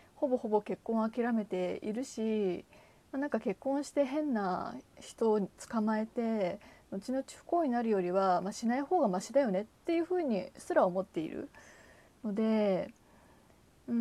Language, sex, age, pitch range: Japanese, female, 20-39, 195-285 Hz